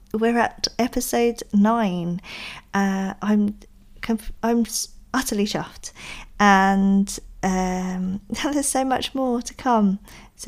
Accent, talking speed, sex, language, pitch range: British, 110 wpm, female, English, 190-225 Hz